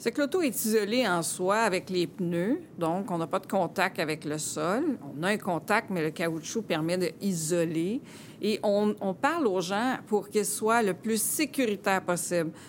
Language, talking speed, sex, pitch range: French, 195 wpm, female, 180-225 Hz